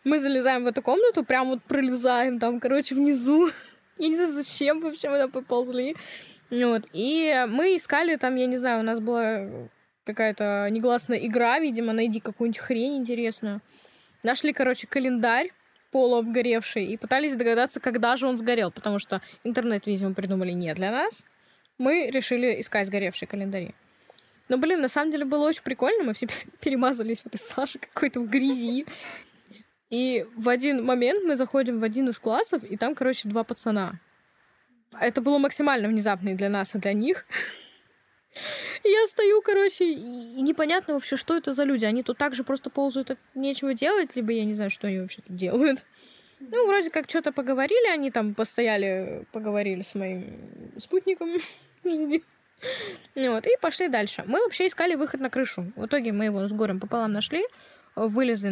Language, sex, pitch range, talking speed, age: Russian, female, 225-290 Hz, 165 wpm, 10-29